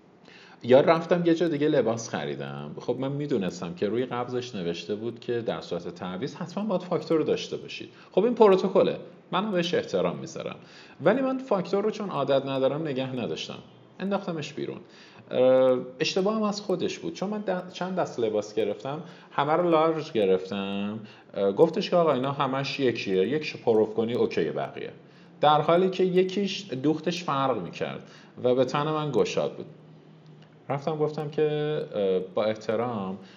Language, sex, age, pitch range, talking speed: Persian, male, 40-59, 120-175 Hz, 155 wpm